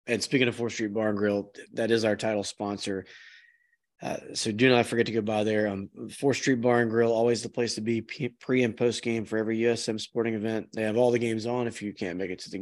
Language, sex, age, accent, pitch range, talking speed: English, male, 20-39, American, 105-125 Hz, 255 wpm